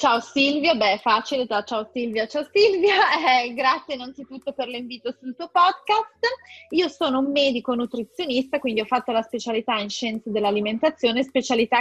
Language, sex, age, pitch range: Italian, female, 20-39, 240-315 Hz